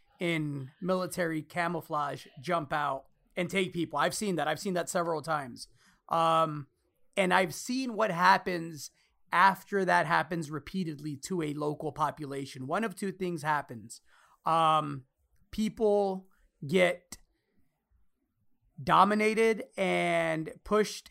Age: 30-49